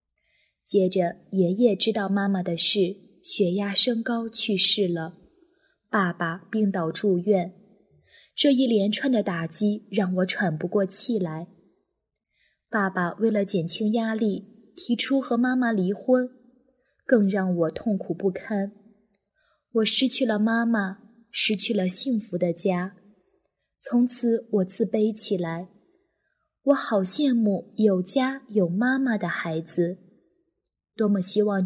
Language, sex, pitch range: Chinese, female, 190-245 Hz